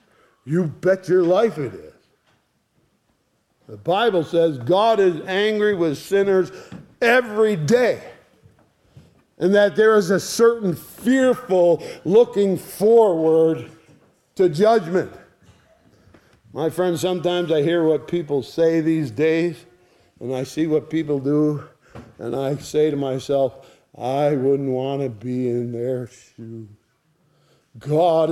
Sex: male